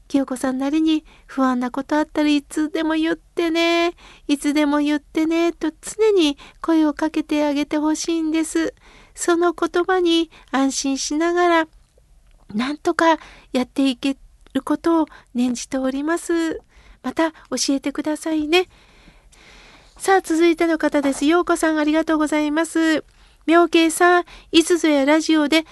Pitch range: 270-325 Hz